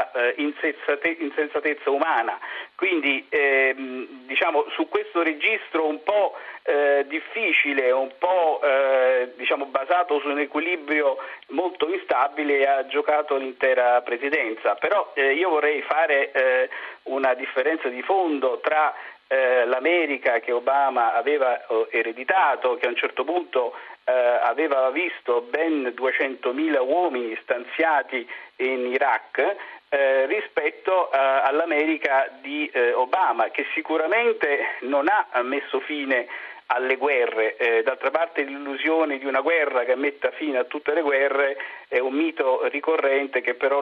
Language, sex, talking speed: Italian, male, 125 wpm